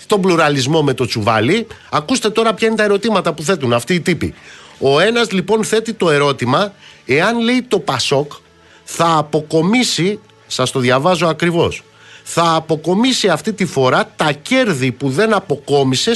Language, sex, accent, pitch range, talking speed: Greek, male, native, 140-210 Hz, 155 wpm